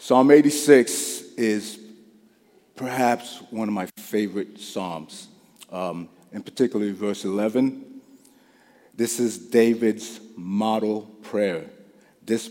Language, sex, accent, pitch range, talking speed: English, male, American, 90-115 Hz, 95 wpm